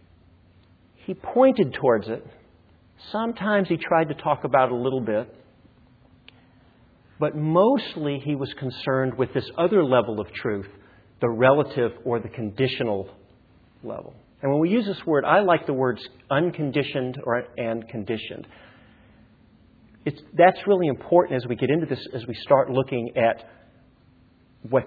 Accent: American